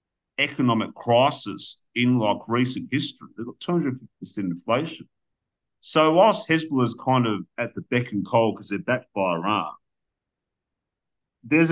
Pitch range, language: 120-160 Hz, English